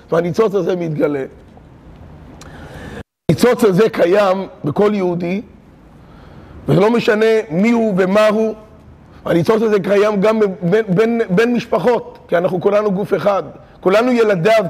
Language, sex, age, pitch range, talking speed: Hebrew, male, 30-49, 175-220 Hz, 110 wpm